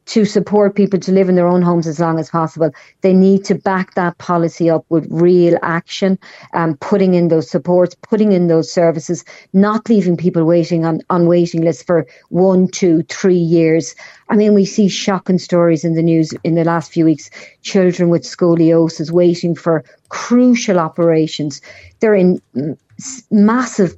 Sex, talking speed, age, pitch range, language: female, 175 wpm, 50-69, 165-200 Hz, English